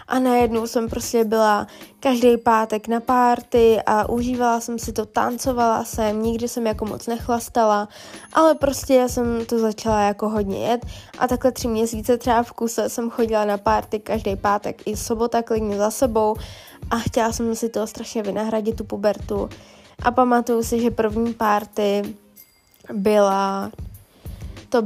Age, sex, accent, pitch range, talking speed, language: 20-39, female, native, 215-235 Hz, 150 wpm, Czech